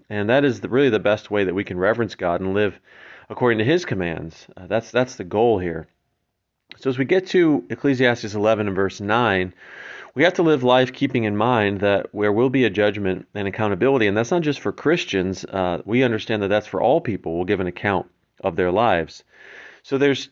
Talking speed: 220 wpm